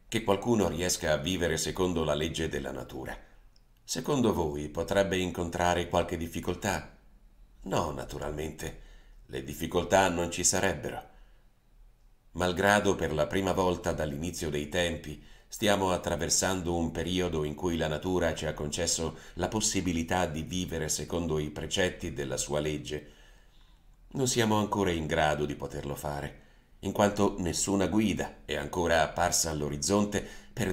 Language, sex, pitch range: Italian, male, 75-95 Hz